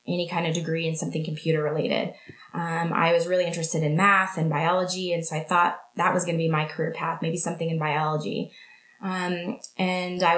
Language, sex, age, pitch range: English, female, 20-39, 165-195 Hz